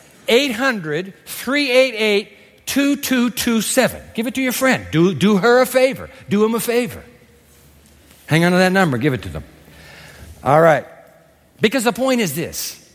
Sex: male